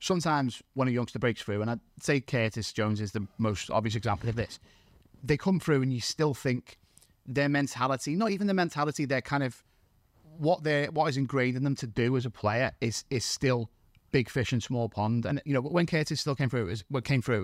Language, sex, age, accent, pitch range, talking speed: English, male, 30-49, British, 110-135 Hz, 225 wpm